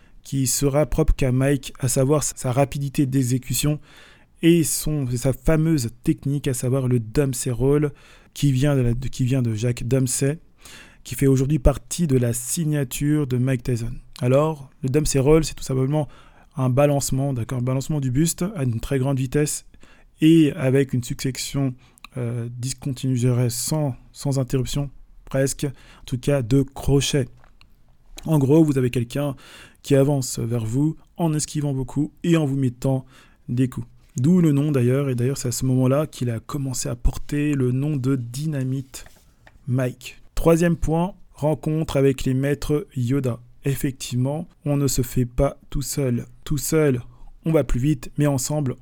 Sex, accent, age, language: male, French, 20-39, French